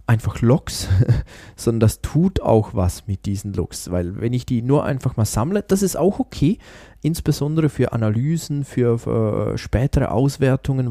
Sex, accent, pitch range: male, German, 110-135 Hz